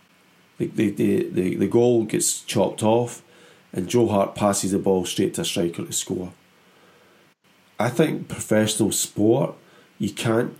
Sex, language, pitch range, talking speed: male, English, 100-150 Hz, 155 wpm